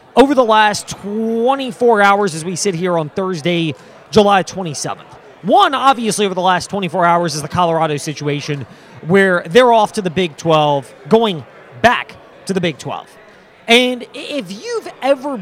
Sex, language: male, English